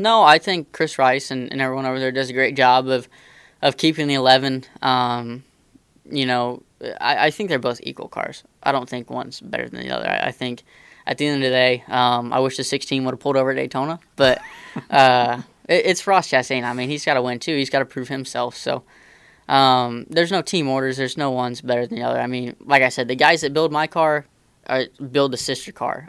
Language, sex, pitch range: English, female, 125-140 Hz